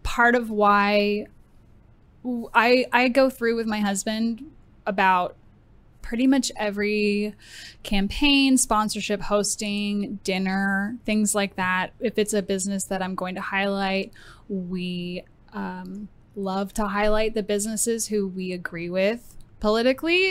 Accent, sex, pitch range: American, female, 190-230 Hz